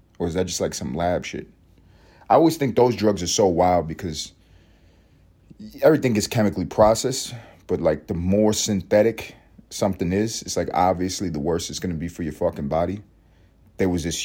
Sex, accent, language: male, American, English